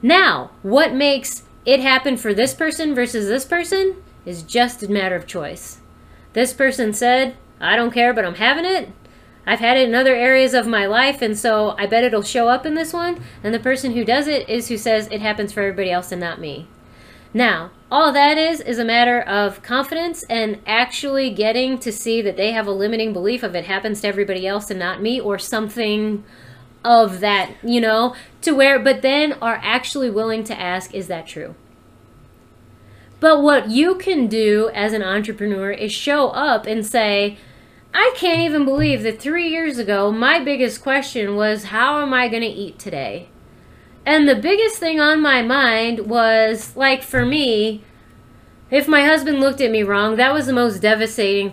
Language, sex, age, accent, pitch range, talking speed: English, female, 30-49, American, 210-270 Hz, 190 wpm